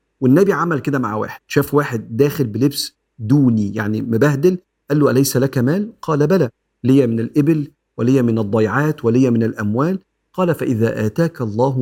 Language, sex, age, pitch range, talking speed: Arabic, male, 50-69, 115-140 Hz, 160 wpm